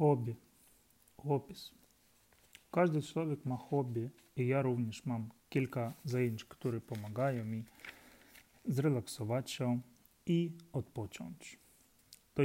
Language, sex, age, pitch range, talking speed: Russian, male, 30-49, 115-140 Hz, 90 wpm